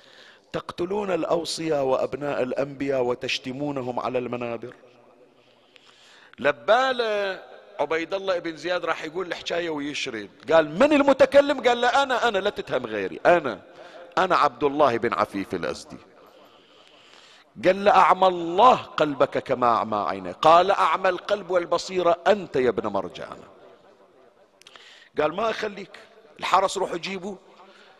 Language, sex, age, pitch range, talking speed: Arabic, male, 50-69, 130-200 Hz, 120 wpm